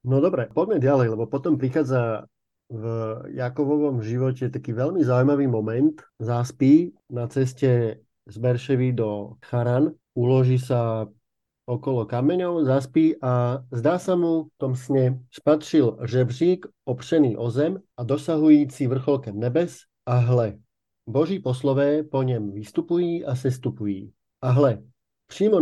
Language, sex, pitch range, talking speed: Slovak, male, 120-150 Hz, 125 wpm